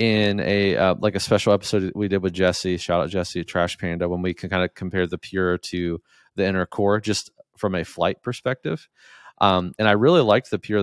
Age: 30-49